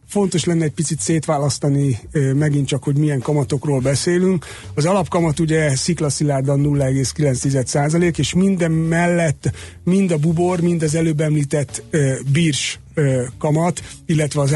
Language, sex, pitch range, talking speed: Hungarian, male, 135-160 Hz, 125 wpm